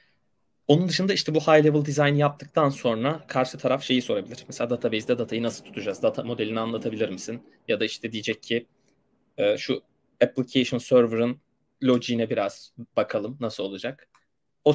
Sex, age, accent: male, 30-49, native